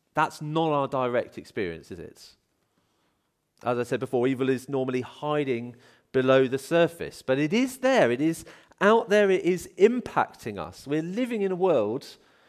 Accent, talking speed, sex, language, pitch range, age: British, 170 wpm, male, English, 125-195 Hz, 40-59